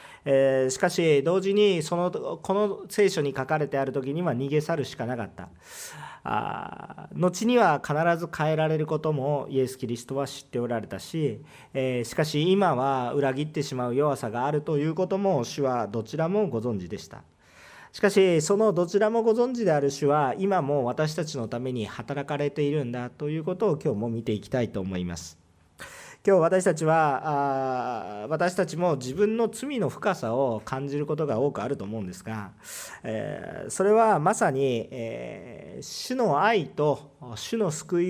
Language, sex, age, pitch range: Japanese, male, 40-59, 125-185 Hz